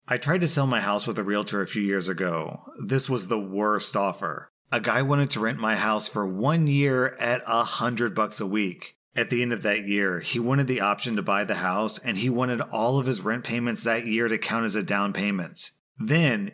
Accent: American